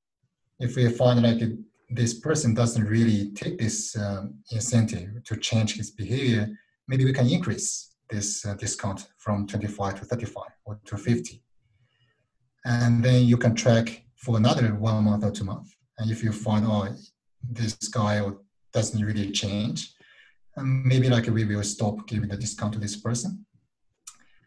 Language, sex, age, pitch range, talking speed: English, male, 30-49, 105-125 Hz, 155 wpm